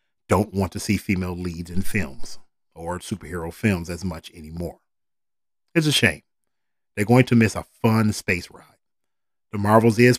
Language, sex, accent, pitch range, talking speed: English, male, American, 90-120 Hz, 165 wpm